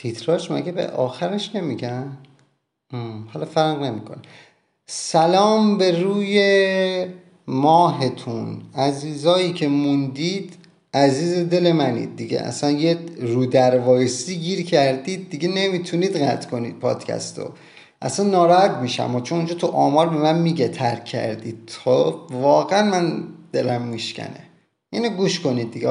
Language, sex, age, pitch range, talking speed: Persian, male, 30-49, 130-180 Hz, 125 wpm